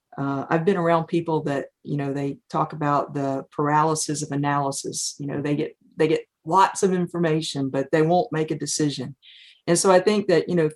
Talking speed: 210 wpm